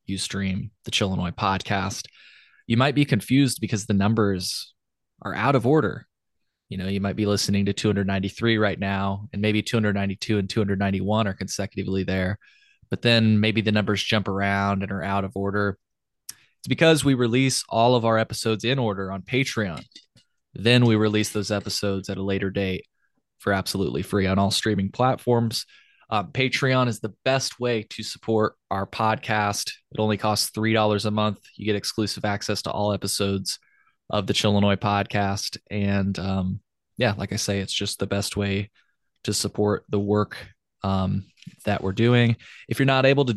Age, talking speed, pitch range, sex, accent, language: 20-39, 175 wpm, 100-115 Hz, male, American, English